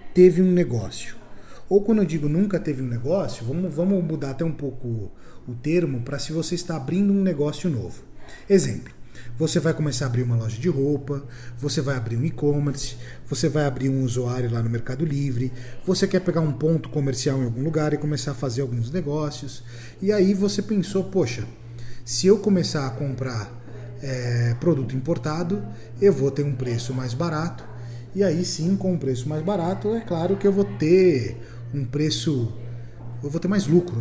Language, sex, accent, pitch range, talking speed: Portuguese, male, Brazilian, 125-180 Hz, 185 wpm